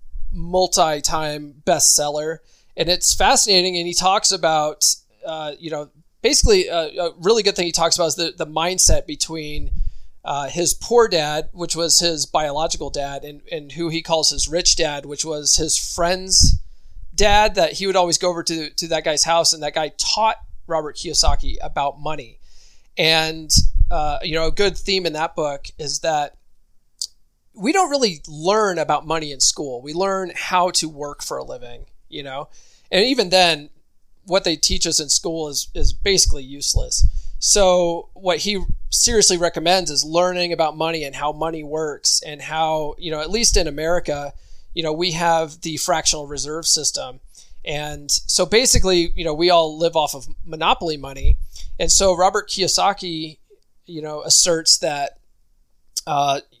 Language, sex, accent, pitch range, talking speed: English, male, American, 150-180 Hz, 170 wpm